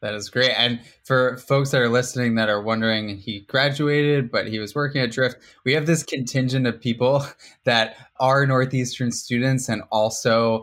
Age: 20-39